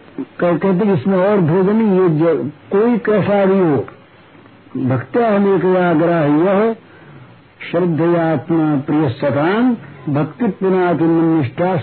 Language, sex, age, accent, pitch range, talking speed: Hindi, male, 60-79, native, 160-205 Hz, 60 wpm